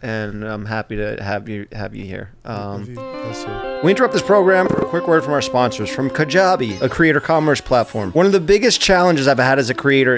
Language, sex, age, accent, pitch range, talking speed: English, male, 30-49, American, 125-150 Hz, 220 wpm